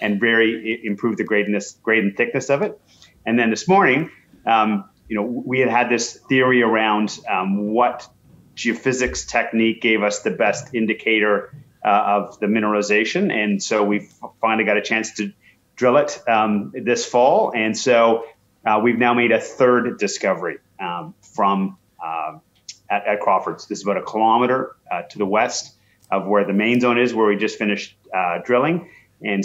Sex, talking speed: male, 175 wpm